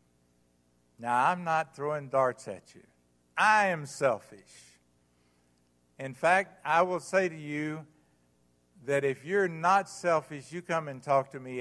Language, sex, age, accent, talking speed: English, male, 60-79, American, 145 wpm